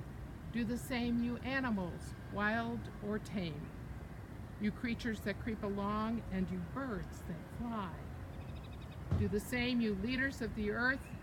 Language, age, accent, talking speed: English, 60-79, American, 140 wpm